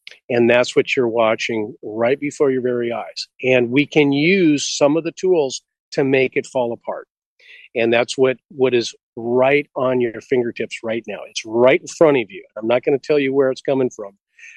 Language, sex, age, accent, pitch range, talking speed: English, male, 40-59, American, 125-155 Hz, 210 wpm